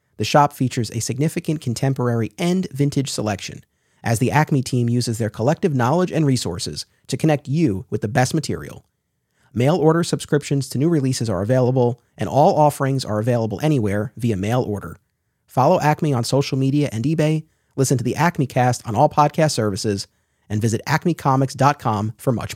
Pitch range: 110-150 Hz